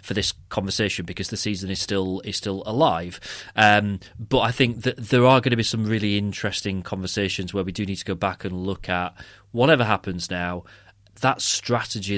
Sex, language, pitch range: male, English, 95-120 Hz